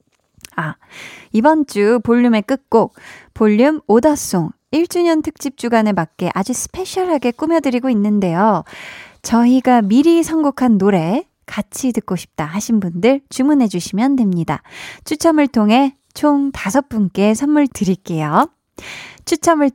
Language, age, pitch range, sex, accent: Korean, 20-39, 190-275 Hz, female, native